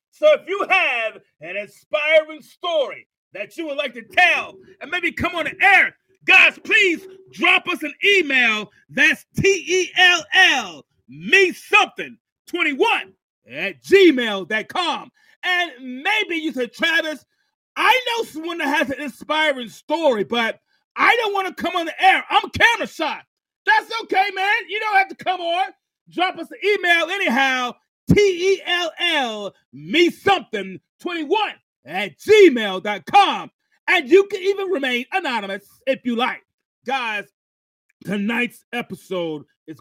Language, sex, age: English, male, 30-49